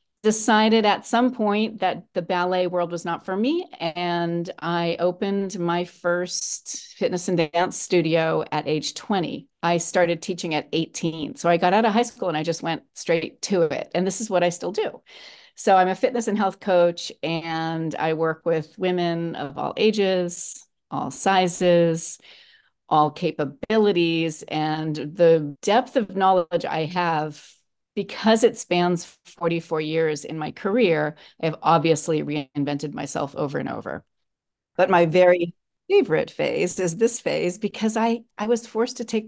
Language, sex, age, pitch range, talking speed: English, female, 40-59, 160-200 Hz, 165 wpm